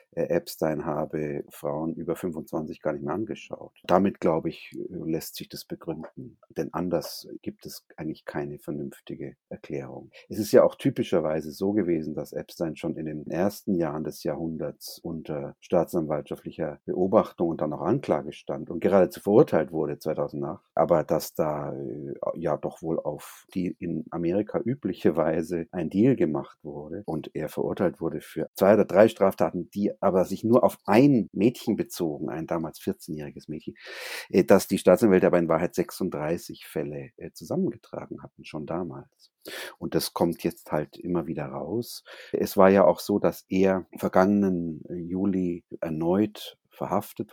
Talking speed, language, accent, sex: 155 wpm, German, German, male